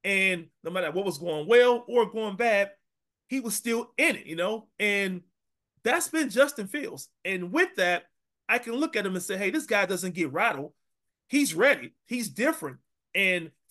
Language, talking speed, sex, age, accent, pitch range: English, 195 wpm, male, 30-49, American, 180-275 Hz